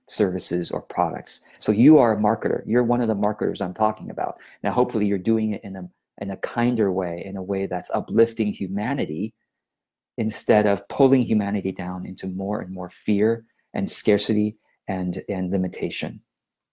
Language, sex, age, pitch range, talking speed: English, male, 40-59, 100-120 Hz, 170 wpm